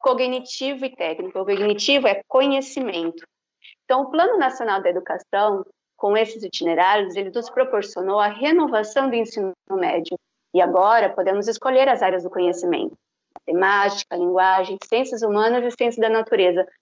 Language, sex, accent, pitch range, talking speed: Portuguese, female, Brazilian, 190-265 Hz, 145 wpm